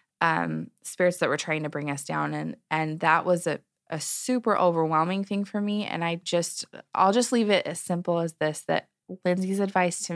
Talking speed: 205 wpm